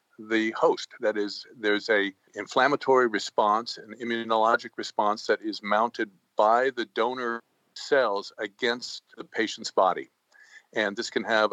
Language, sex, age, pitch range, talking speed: English, male, 50-69, 110-140 Hz, 135 wpm